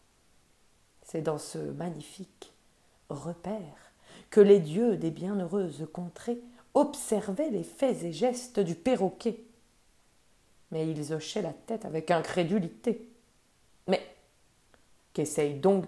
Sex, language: female, French